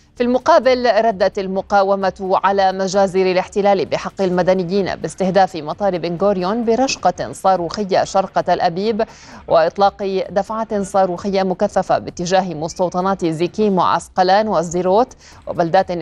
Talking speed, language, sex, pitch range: 95 wpm, Arabic, female, 180-205 Hz